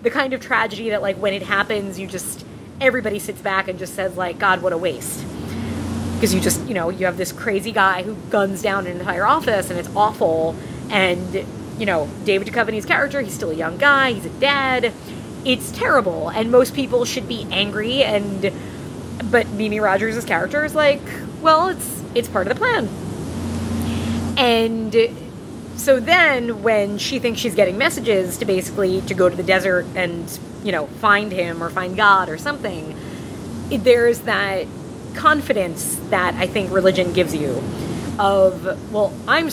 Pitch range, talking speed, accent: 185-235 Hz, 175 wpm, American